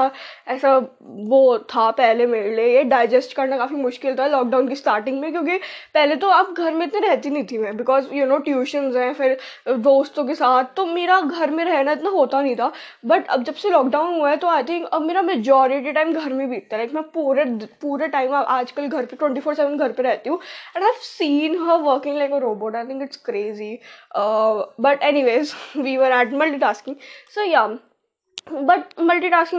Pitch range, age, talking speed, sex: 255-320 Hz, 10-29, 195 wpm, female